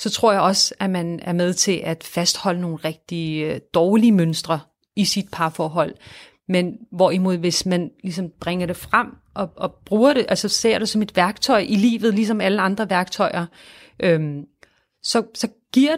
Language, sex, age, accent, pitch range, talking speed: Danish, female, 30-49, native, 175-210 Hz, 175 wpm